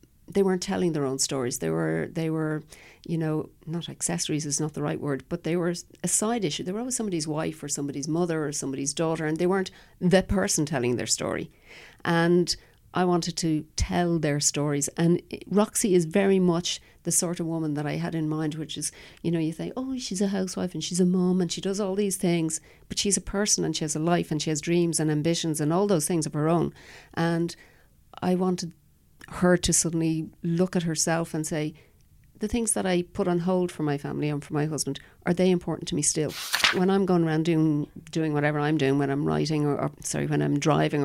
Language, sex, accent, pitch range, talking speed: English, female, Irish, 150-180 Hz, 230 wpm